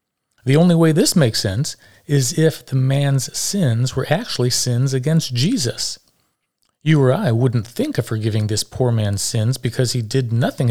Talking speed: 175 wpm